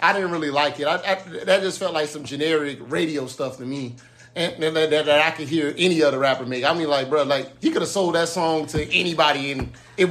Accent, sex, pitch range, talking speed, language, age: American, male, 145-180 Hz, 260 wpm, English, 30-49